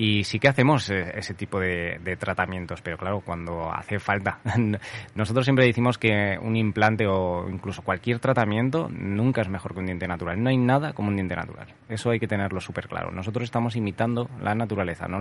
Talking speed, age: 195 wpm, 20-39